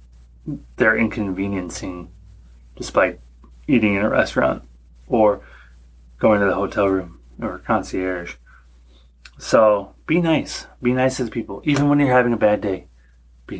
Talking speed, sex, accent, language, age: 135 wpm, male, American, English, 30-49